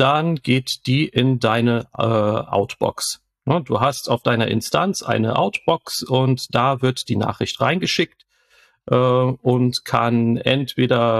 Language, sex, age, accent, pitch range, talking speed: German, male, 40-59, German, 115-135 Hz, 130 wpm